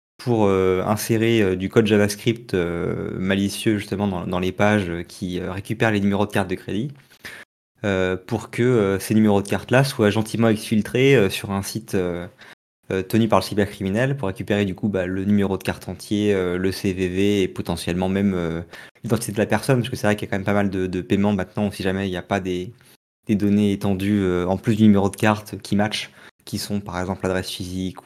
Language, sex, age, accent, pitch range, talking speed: French, male, 20-39, French, 95-115 Hz, 225 wpm